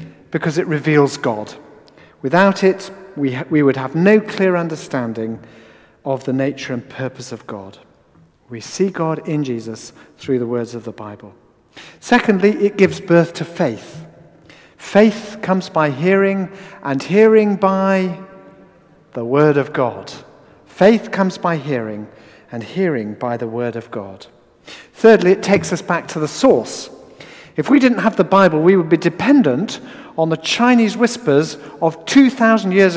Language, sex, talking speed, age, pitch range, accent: English, male, 155 wpm, 50-69, 135-190 Hz, British